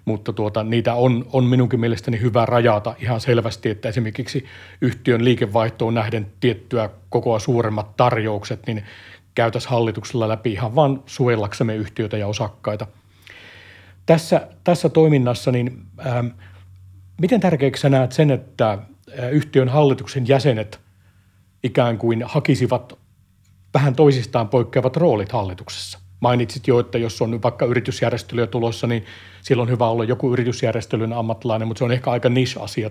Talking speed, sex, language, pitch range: 135 wpm, male, Finnish, 105-130 Hz